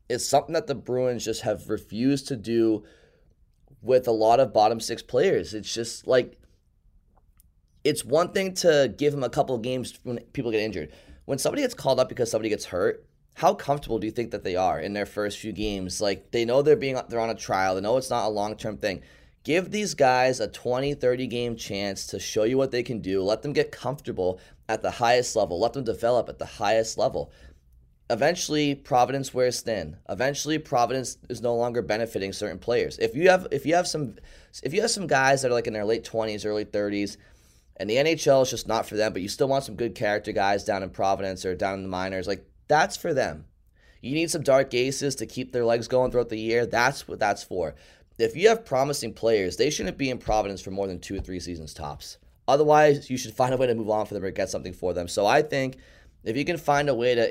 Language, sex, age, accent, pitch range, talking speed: English, male, 20-39, American, 105-135 Hz, 230 wpm